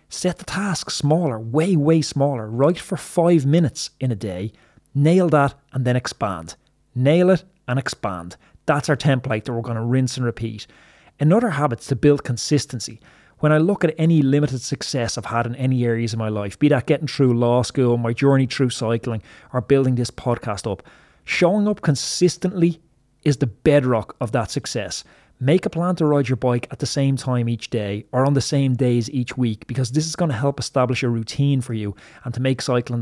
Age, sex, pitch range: 30-49, male, 115-150 Hz